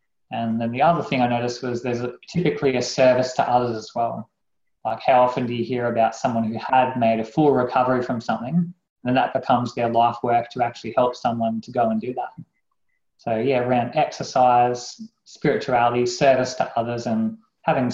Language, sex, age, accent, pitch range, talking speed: English, male, 20-39, Australian, 120-135 Hz, 195 wpm